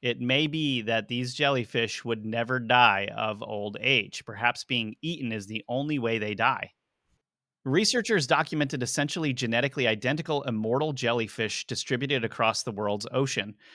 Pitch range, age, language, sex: 110-145 Hz, 30-49, English, male